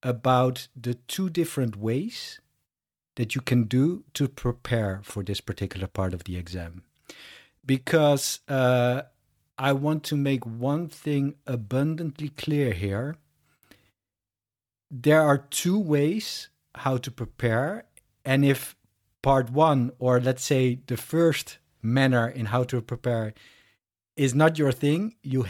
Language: English